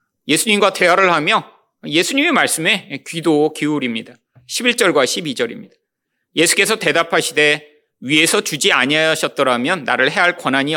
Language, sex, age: Korean, male, 30-49